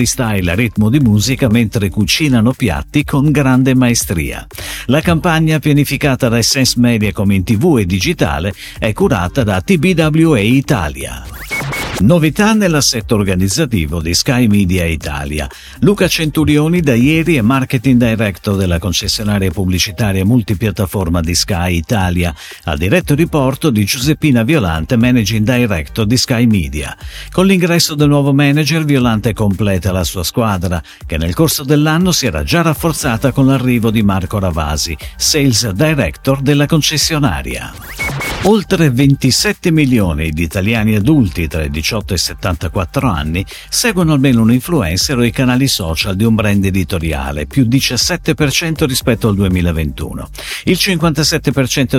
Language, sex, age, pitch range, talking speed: Italian, male, 50-69, 95-145 Hz, 135 wpm